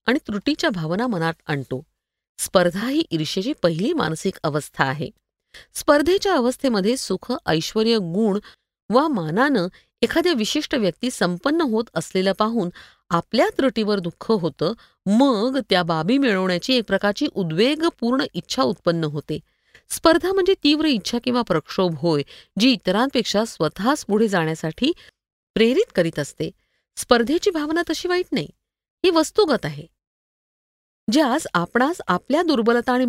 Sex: female